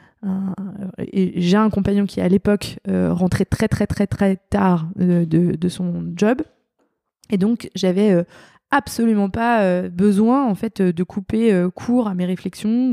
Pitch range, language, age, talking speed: 185-225 Hz, French, 20-39, 165 wpm